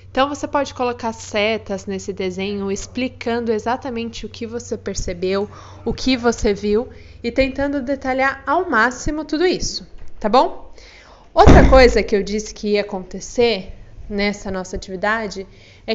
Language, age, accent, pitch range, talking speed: Portuguese, 20-39, Brazilian, 205-255 Hz, 145 wpm